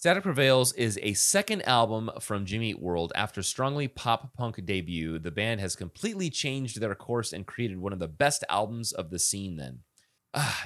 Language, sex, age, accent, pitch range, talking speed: English, male, 30-49, American, 95-130 Hz, 190 wpm